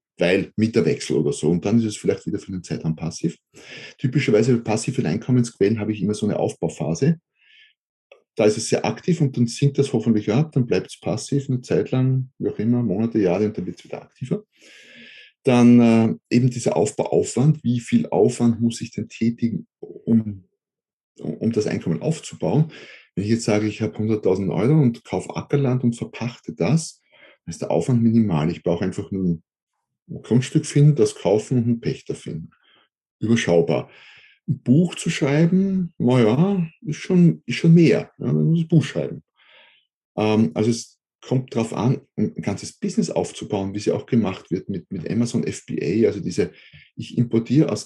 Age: 30-49